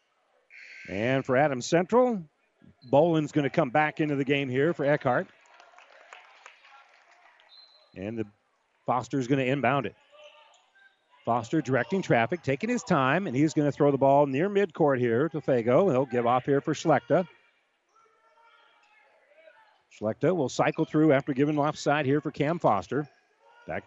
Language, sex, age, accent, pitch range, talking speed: English, male, 40-59, American, 145-185 Hz, 150 wpm